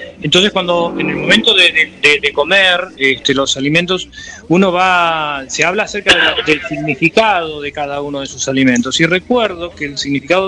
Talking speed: 165 wpm